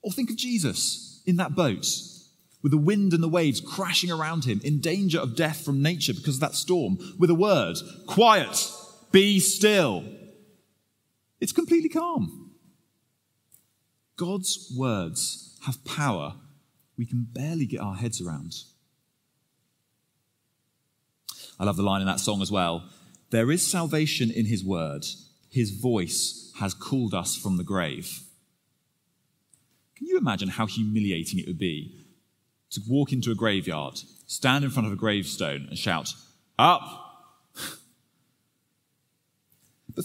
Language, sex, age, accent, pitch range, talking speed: English, male, 30-49, British, 115-180 Hz, 140 wpm